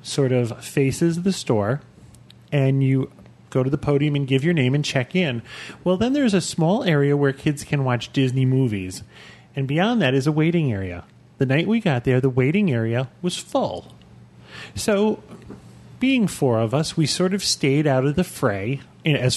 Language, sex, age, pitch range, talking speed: English, male, 30-49, 125-170 Hz, 190 wpm